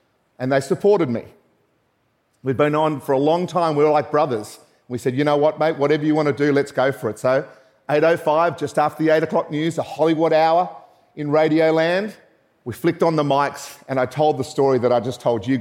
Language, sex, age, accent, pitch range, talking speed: English, male, 40-59, Australian, 135-165 Hz, 225 wpm